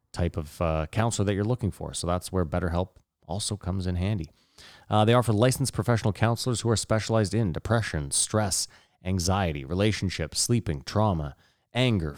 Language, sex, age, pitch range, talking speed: English, male, 30-49, 90-115 Hz, 165 wpm